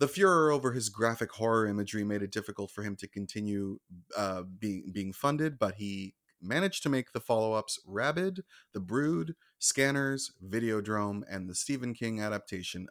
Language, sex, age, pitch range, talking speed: English, male, 30-49, 100-130 Hz, 165 wpm